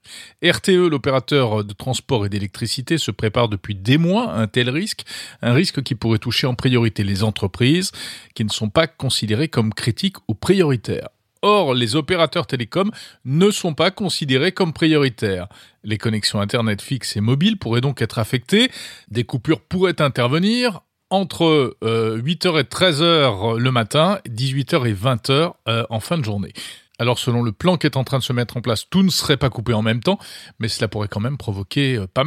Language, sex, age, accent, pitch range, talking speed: French, male, 40-59, French, 115-160 Hz, 185 wpm